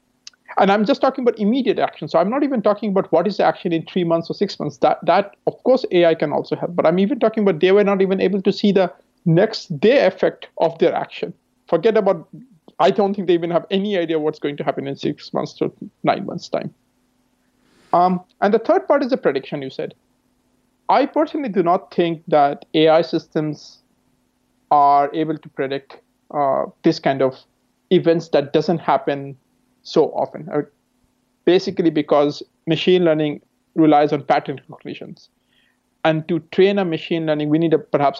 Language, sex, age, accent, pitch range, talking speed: English, male, 50-69, Indian, 150-190 Hz, 190 wpm